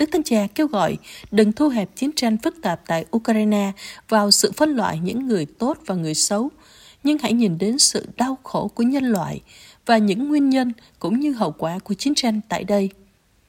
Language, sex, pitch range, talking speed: Vietnamese, female, 195-250 Hz, 210 wpm